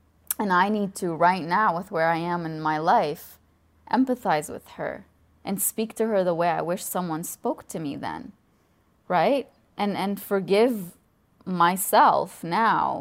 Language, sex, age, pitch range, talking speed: English, female, 20-39, 165-205 Hz, 160 wpm